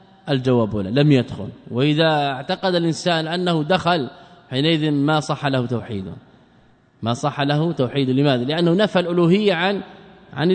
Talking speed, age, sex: 135 wpm, 20-39, male